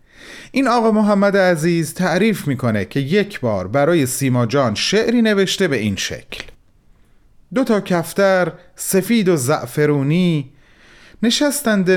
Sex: male